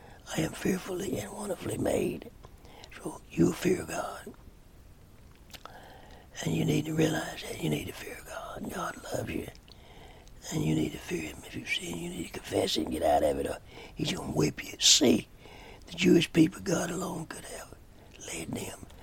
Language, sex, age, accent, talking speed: English, male, 60-79, American, 180 wpm